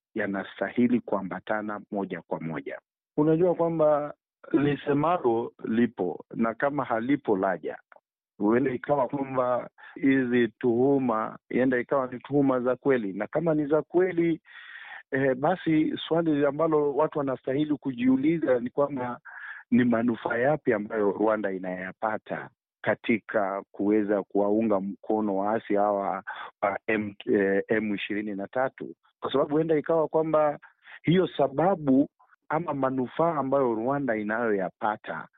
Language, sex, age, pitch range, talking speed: Swahili, male, 50-69, 110-150 Hz, 110 wpm